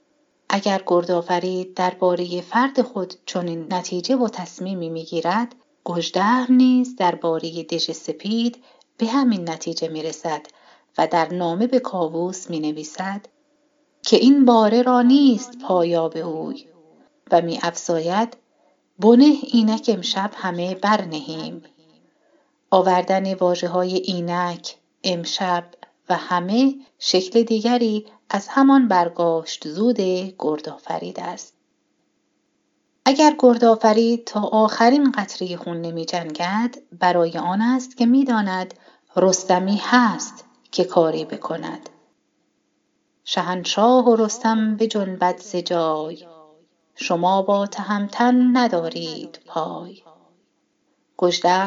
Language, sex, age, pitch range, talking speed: Persian, female, 40-59, 175-240 Hz, 100 wpm